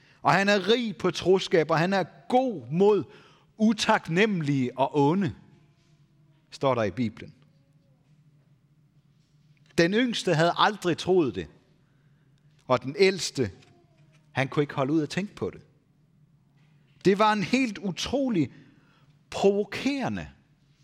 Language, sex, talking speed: Danish, male, 120 wpm